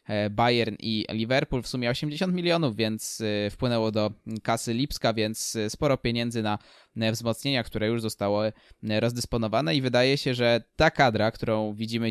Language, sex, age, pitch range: Polish, male, 20-39, 105-125 Hz